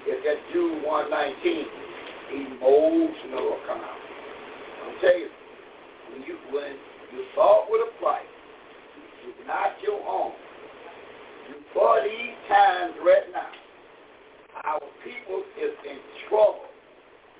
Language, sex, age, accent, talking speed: English, male, 60-79, American, 115 wpm